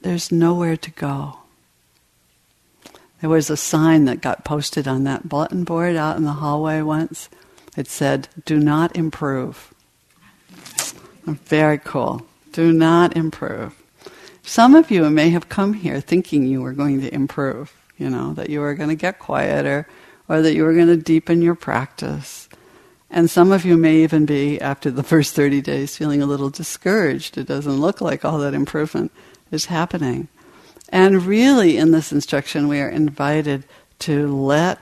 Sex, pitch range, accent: female, 140-165 Hz, American